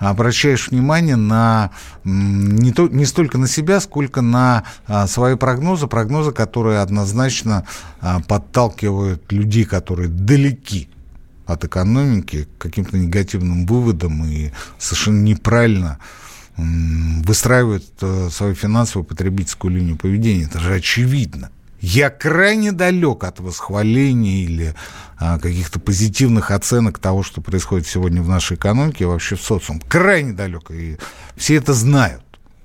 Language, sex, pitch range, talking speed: Russian, male, 95-130 Hz, 115 wpm